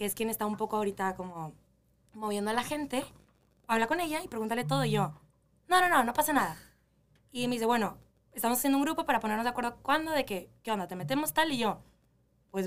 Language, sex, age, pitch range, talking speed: Spanish, female, 20-39, 195-240 Hz, 230 wpm